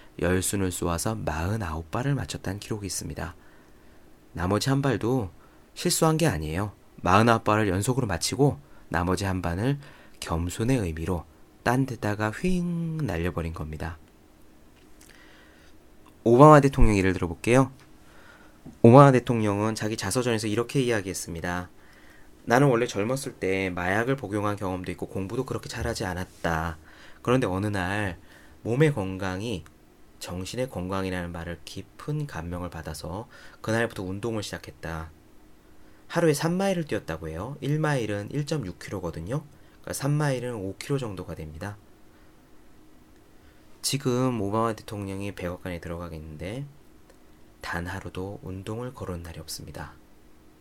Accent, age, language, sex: native, 20-39, Korean, male